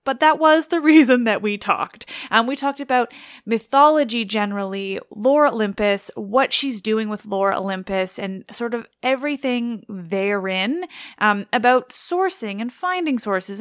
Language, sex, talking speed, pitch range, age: English, female, 150 wpm, 195-260 Hz, 20-39